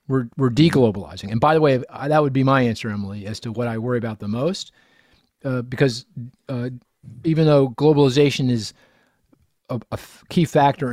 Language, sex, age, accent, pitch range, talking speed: English, male, 40-59, American, 115-145 Hz, 180 wpm